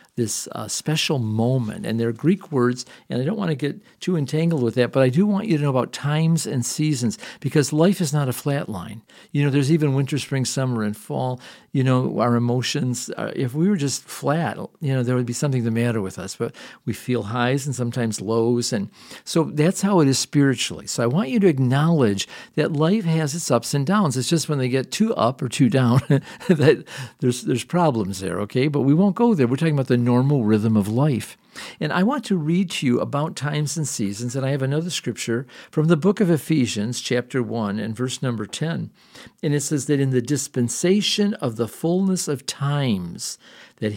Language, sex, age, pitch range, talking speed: English, male, 50-69, 120-170 Hz, 220 wpm